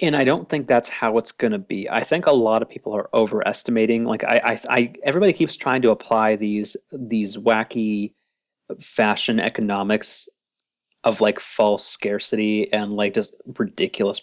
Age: 30-49